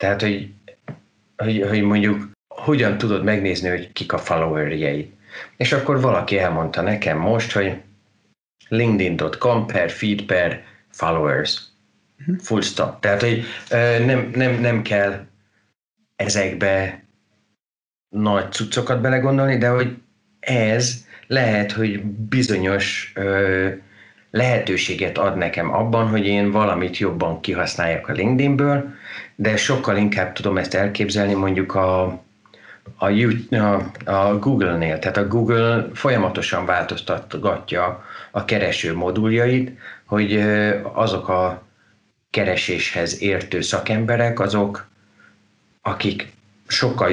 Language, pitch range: Hungarian, 95-115 Hz